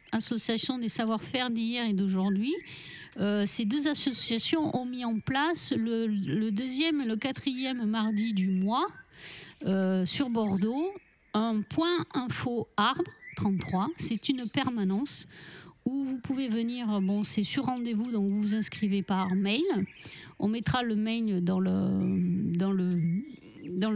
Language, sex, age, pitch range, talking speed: French, female, 50-69, 190-230 Hz, 130 wpm